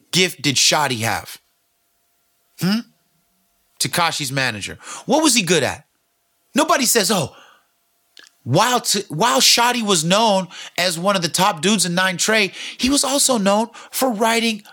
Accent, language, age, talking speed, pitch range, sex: American, English, 30-49, 145 wpm, 145-220 Hz, male